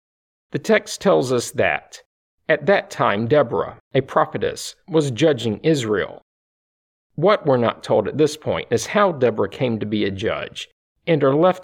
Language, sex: English, male